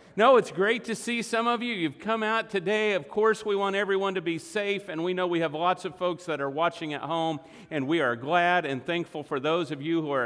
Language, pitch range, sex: English, 150-205 Hz, male